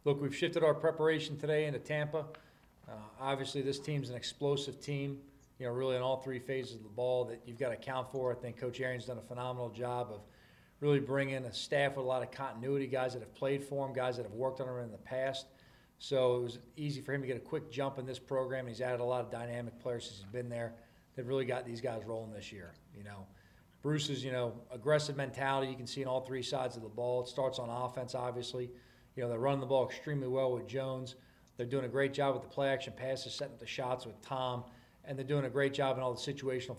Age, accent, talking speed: 40-59, American, 250 wpm